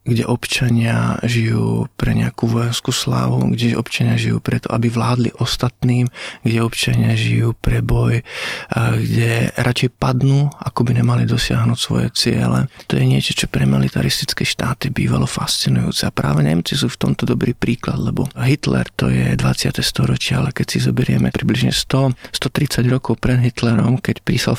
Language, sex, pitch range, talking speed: Slovak, male, 105-120 Hz, 150 wpm